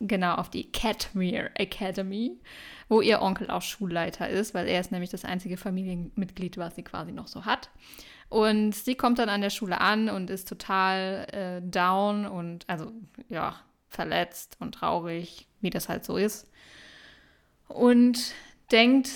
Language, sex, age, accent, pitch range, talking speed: German, female, 20-39, German, 180-220 Hz, 155 wpm